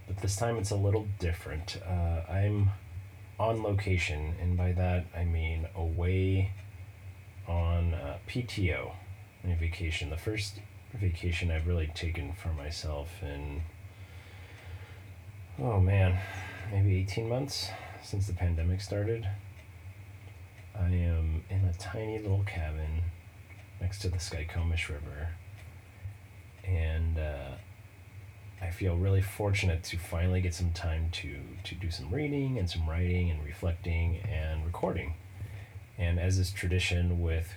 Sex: male